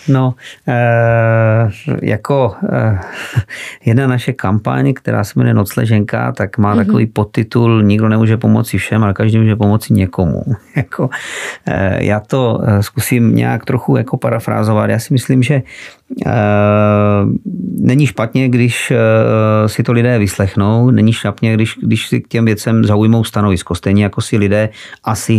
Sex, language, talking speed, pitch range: male, Czech, 125 wpm, 95-115 Hz